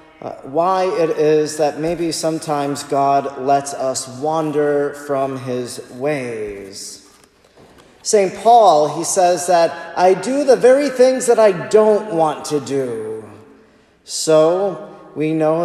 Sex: male